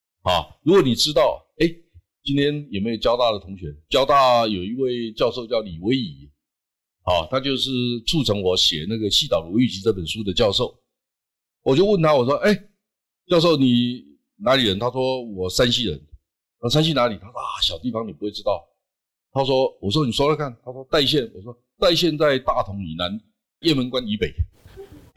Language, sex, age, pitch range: Chinese, male, 50-69, 90-130 Hz